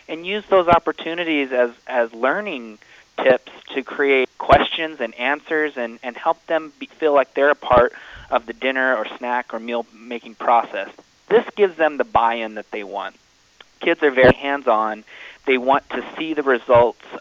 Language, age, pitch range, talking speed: English, 30-49, 120-150 Hz, 165 wpm